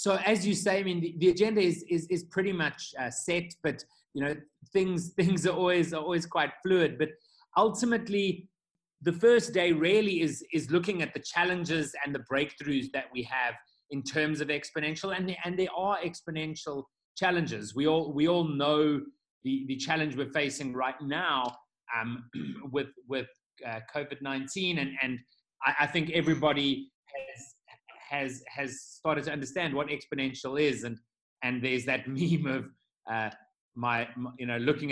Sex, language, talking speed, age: male, English, 170 wpm, 30-49